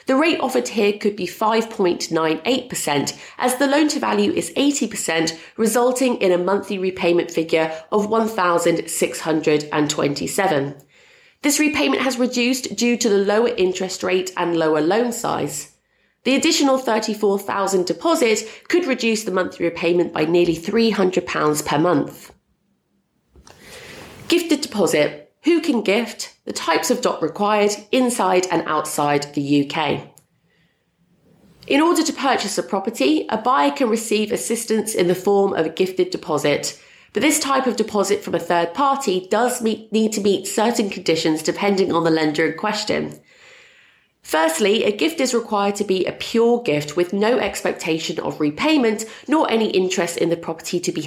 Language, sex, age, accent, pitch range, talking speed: English, female, 30-49, British, 170-240 Hz, 150 wpm